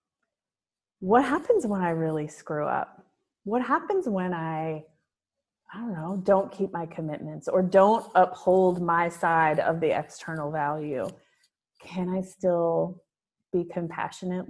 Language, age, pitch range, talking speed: English, 30-49, 165-210 Hz, 135 wpm